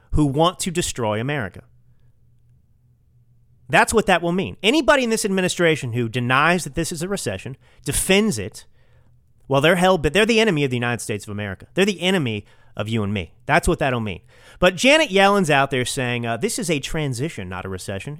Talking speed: 195 wpm